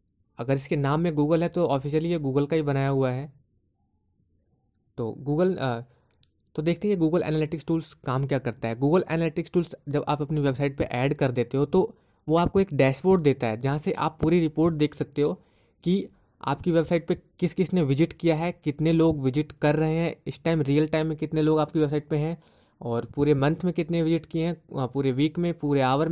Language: Hindi